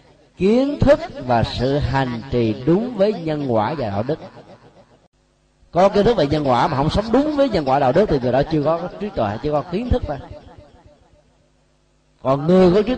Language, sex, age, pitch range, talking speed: Vietnamese, male, 30-49, 135-195 Hz, 205 wpm